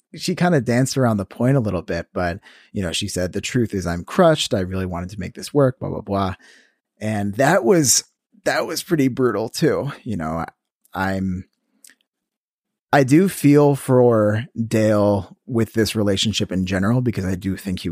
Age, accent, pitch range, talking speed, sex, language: 30-49, American, 95-125 Hz, 190 wpm, male, English